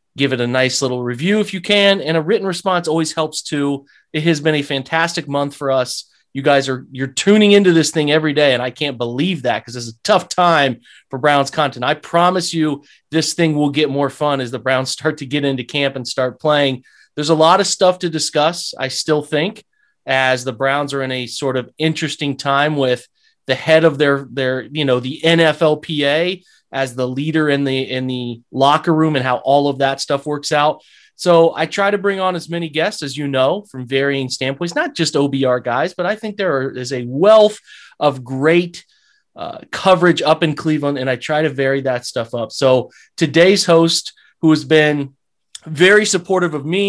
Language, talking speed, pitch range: English, 210 wpm, 135-165 Hz